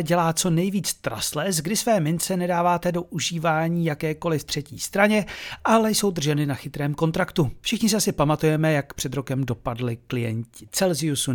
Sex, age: male, 40-59